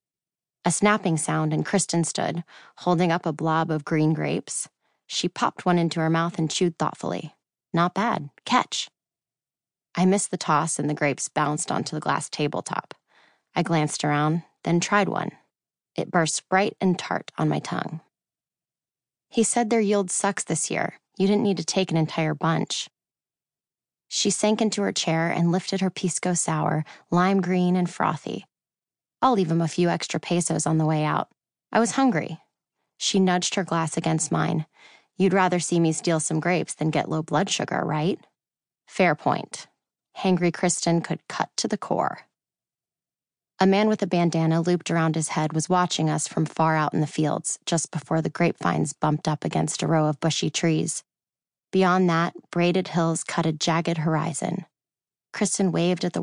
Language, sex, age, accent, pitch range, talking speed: English, female, 20-39, American, 155-180 Hz, 175 wpm